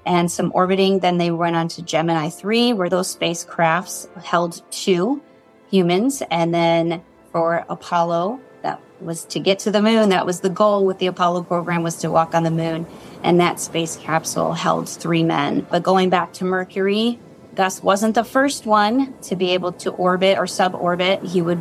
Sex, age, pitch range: female, 30-49, 175-210 Hz